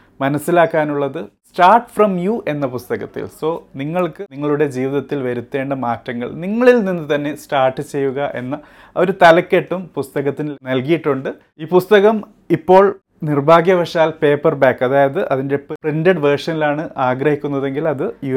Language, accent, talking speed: Malayalam, native, 115 wpm